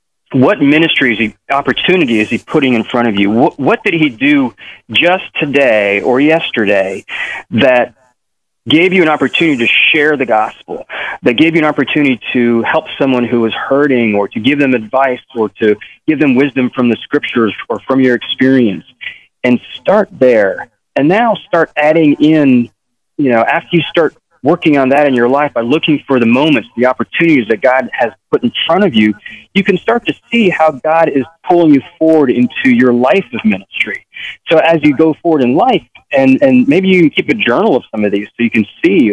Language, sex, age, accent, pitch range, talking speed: English, male, 30-49, American, 120-165 Hz, 200 wpm